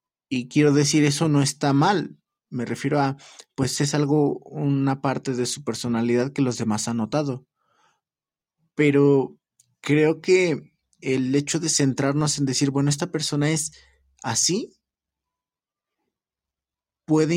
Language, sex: Spanish, male